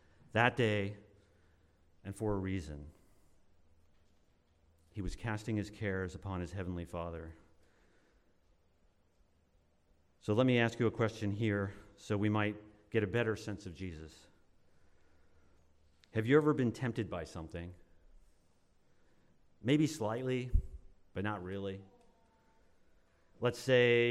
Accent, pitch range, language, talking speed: American, 85-120 Hz, English, 115 wpm